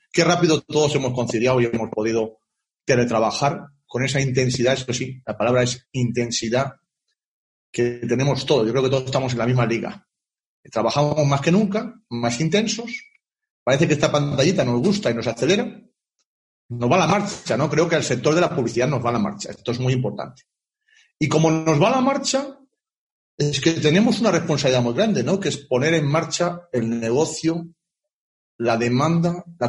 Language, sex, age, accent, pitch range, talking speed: Spanish, male, 40-59, Spanish, 130-190 Hz, 185 wpm